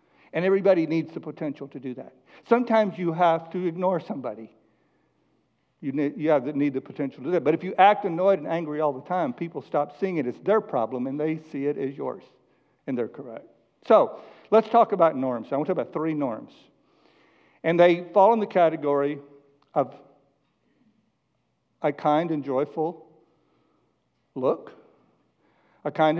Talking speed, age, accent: 175 wpm, 60-79, American